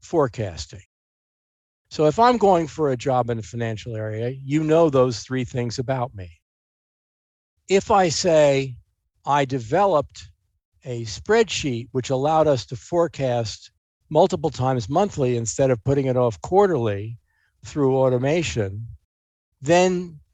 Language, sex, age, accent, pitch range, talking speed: English, male, 50-69, American, 115-165 Hz, 125 wpm